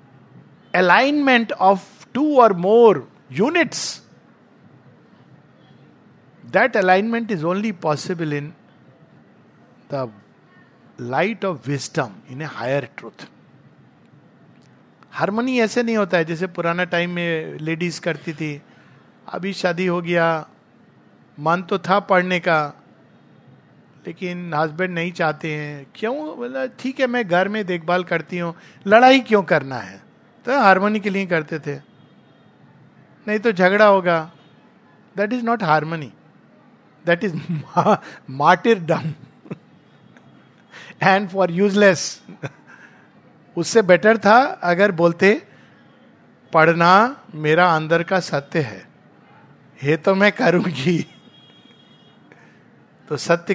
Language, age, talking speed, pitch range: Hindi, 50-69, 100 wpm, 160-210 Hz